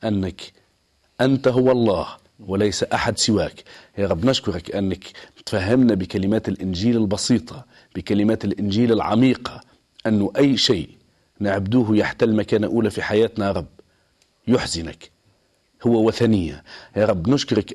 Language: Arabic